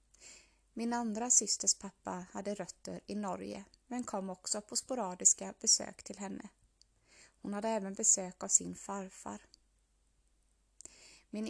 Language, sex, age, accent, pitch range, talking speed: Swedish, female, 20-39, native, 185-220 Hz, 125 wpm